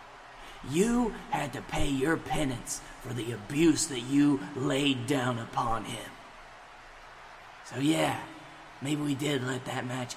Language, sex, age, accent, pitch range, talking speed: English, male, 30-49, American, 125-145 Hz, 135 wpm